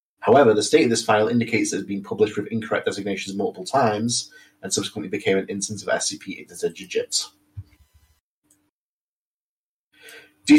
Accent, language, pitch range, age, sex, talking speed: British, English, 95-120 Hz, 30-49, male, 155 wpm